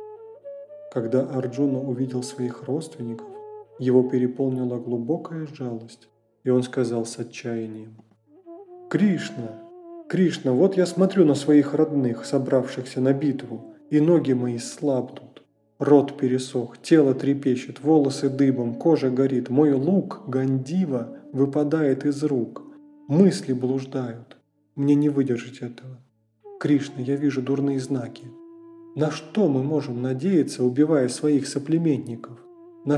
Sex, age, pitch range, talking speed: male, 20-39, 125-165 Hz, 115 wpm